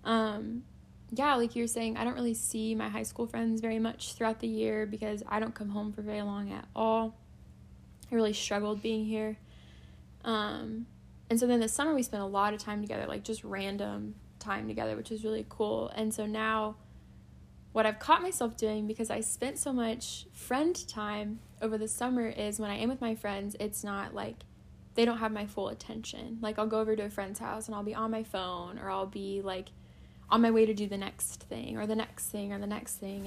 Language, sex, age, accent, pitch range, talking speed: English, female, 10-29, American, 200-225 Hz, 220 wpm